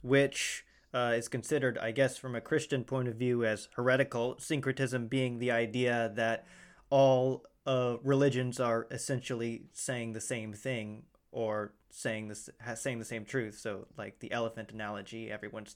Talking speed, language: 150 wpm, English